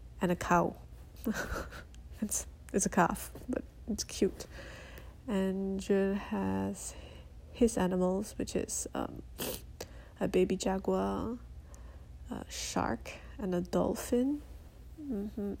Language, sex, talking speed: English, female, 105 wpm